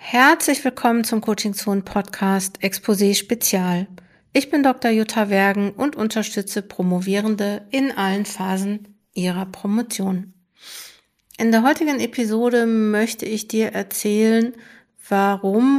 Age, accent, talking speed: 50-69, German, 105 wpm